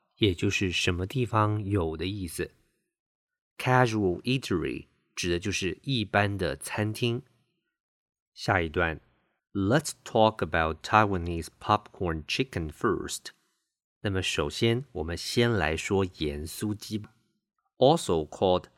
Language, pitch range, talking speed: English, 85-120 Hz, 40 wpm